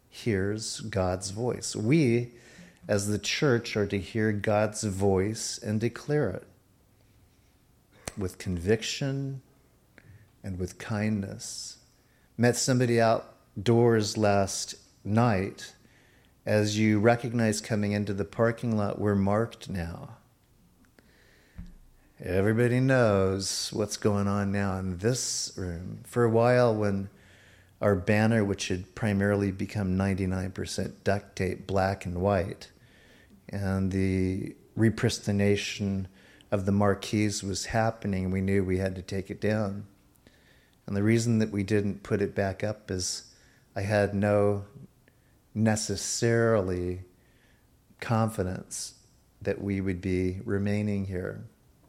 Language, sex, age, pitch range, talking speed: English, male, 40-59, 95-110 Hz, 115 wpm